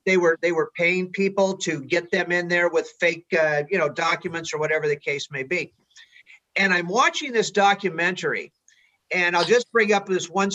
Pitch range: 170-205 Hz